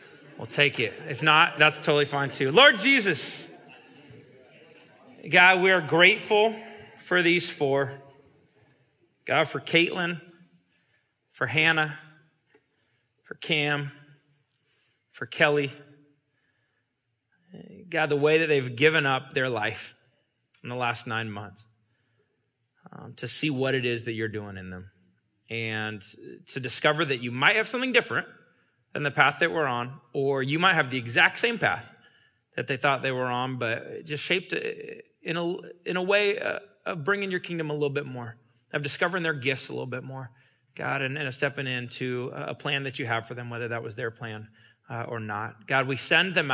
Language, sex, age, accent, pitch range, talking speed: English, male, 30-49, American, 125-165 Hz, 170 wpm